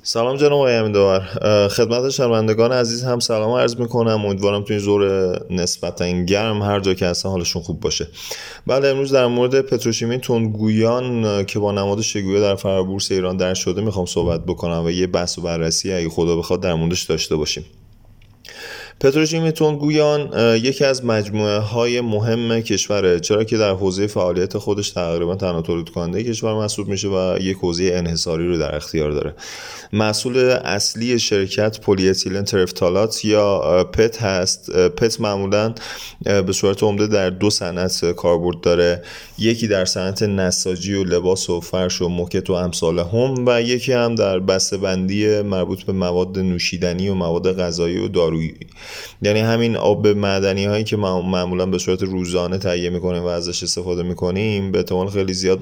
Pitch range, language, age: 90-110 Hz, Persian, 30-49